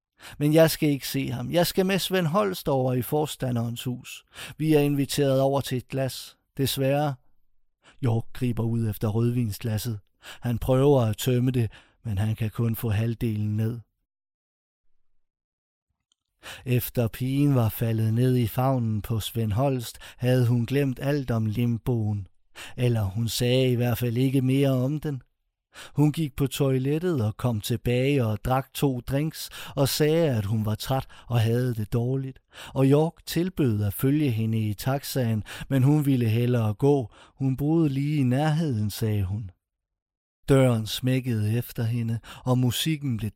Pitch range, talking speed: 110-135 Hz, 160 wpm